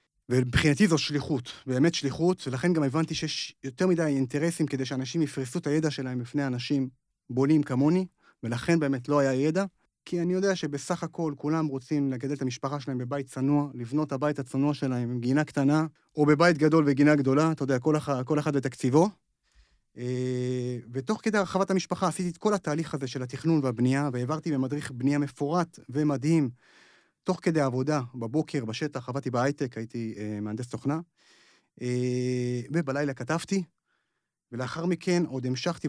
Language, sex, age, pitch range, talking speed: Hebrew, male, 30-49, 130-160 Hz, 155 wpm